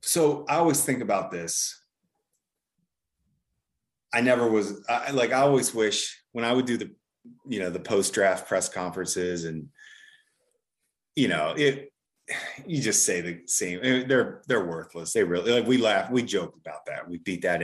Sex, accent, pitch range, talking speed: male, American, 90-135 Hz, 170 wpm